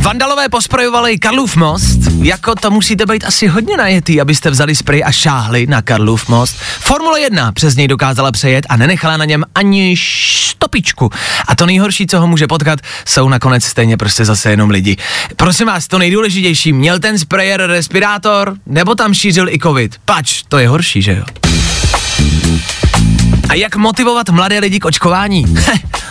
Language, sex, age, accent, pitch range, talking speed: Czech, male, 30-49, native, 125-190 Hz, 165 wpm